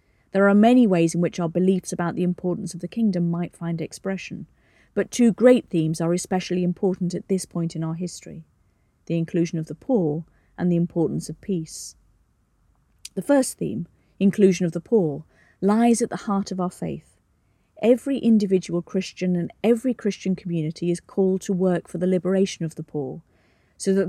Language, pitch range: English, 165-200 Hz